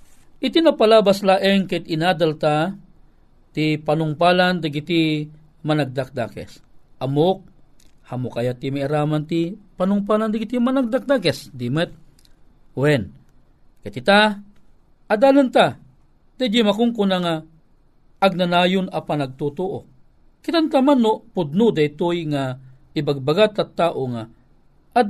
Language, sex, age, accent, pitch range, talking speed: Filipino, male, 50-69, native, 150-220 Hz, 105 wpm